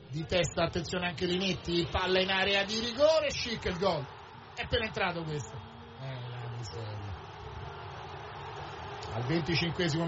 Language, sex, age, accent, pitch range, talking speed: Spanish, male, 30-49, Italian, 155-190 Hz, 125 wpm